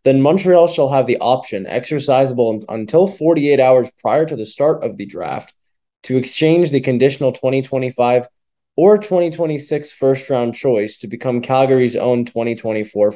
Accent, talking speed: American, 140 wpm